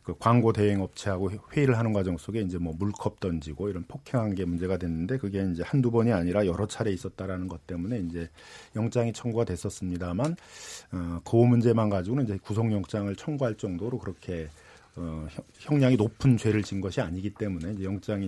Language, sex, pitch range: Korean, male, 90-120 Hz